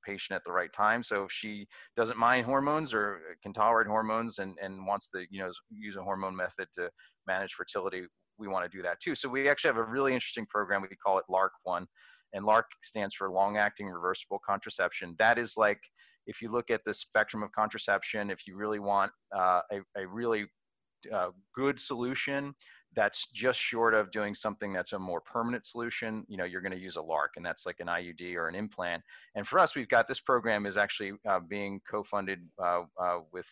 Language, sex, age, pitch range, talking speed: English, male, 30-49, 95-115 Hz, 205 wpm